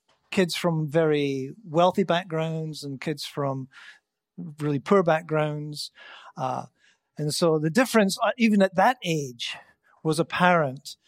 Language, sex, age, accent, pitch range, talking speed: English, male, 50-69, British, 150-180 Hz, 120 wpm